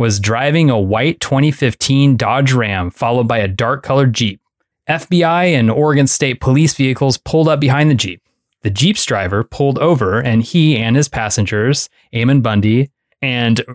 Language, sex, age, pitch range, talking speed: English, male, 20-39, 115-145 Hz, 155 wpm